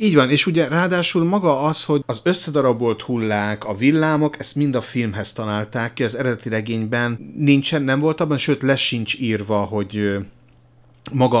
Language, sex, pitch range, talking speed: Hungarian, male, 100-130 Hz, 165 wpm